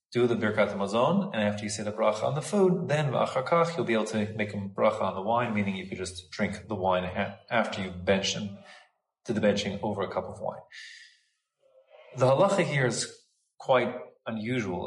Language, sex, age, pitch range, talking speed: English, male, 30-49, 100-130 Hz, 200 wpm